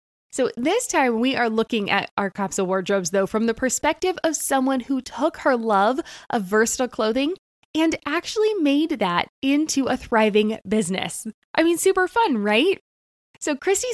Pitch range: 210-285 Hz